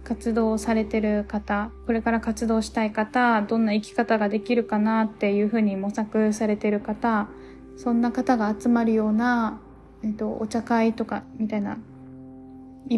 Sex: female